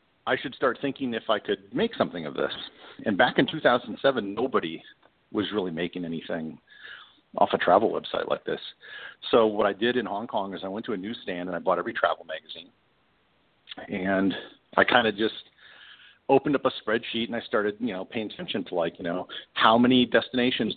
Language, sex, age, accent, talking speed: English, male, 50-69, American, 195 wpm